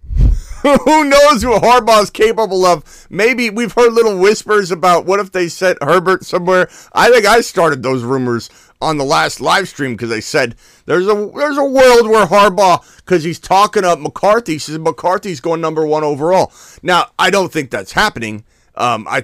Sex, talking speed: male, 180 wpm